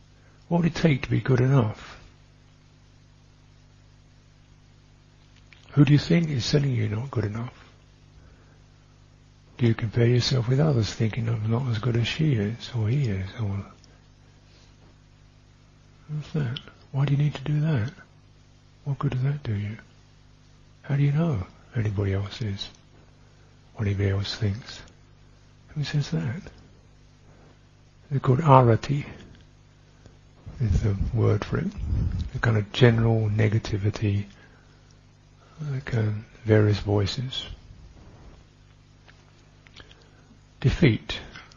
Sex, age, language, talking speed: male, 60-79, English, 120 wpm